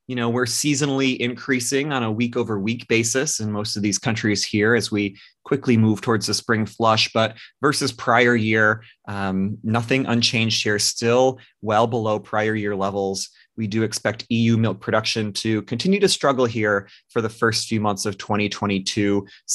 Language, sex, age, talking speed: English, male, 30-49, 170 wpm